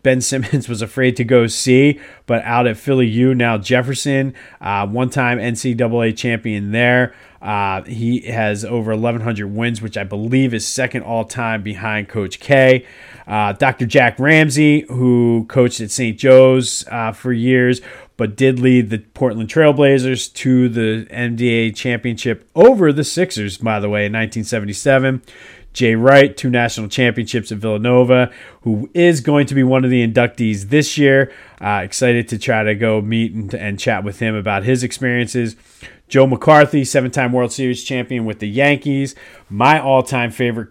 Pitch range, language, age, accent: 115-130 Hz, English, 30-49, American